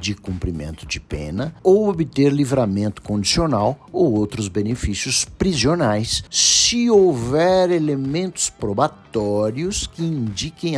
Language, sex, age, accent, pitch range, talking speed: Portuguese, male, 60-79, Brazilian, 95-145 Hz, 100 wpm